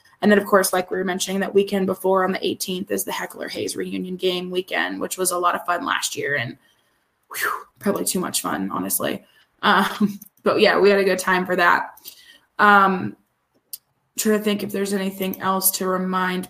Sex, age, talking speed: female, 20-39, 200 wpm